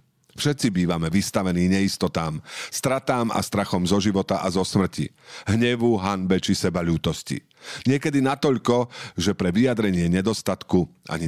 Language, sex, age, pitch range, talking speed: Slovak, male, 50-69, 90-120 Hz, 120 wpm